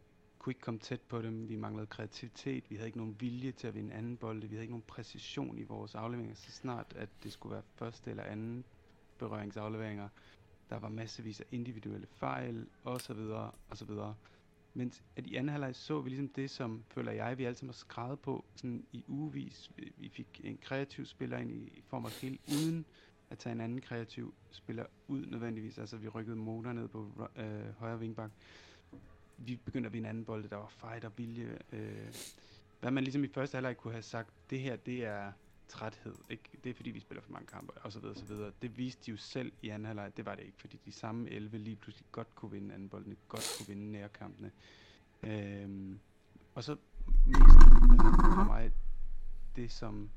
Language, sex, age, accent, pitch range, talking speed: Danish, male, 30-49, native, 105-120 Hz, 210 wpm